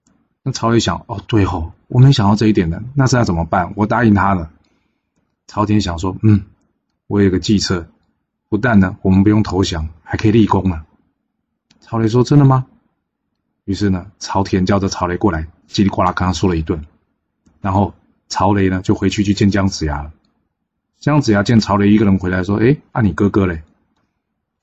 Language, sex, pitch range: Chinese, male, 90-110 Hz